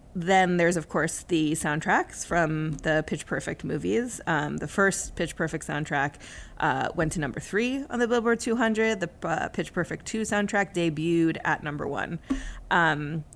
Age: 30-49